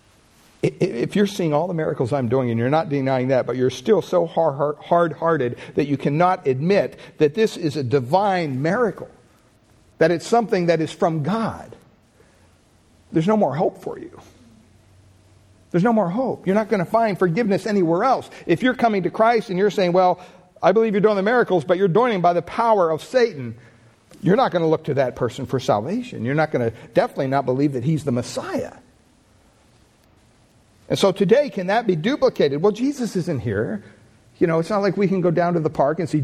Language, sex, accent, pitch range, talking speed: English, male, American, 125-185 Hz, 200 wpm